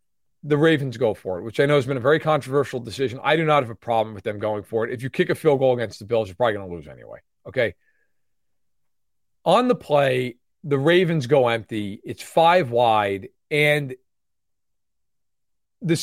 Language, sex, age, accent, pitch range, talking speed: English, male, 40-59, American, 125-185 Hz, 200 wpm